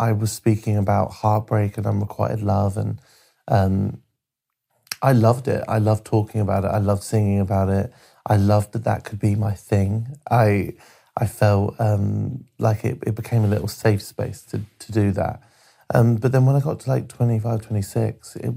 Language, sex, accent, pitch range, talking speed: English, male, British, 105-115 Hz, 195 wpm